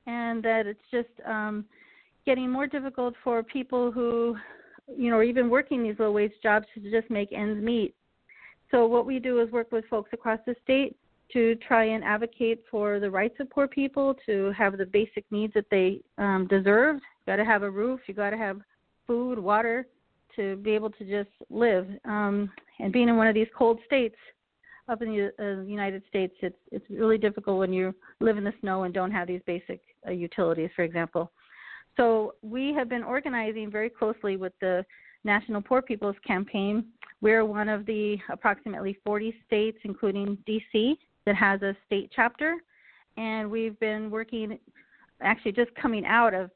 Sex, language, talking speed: female, English, 180 wpm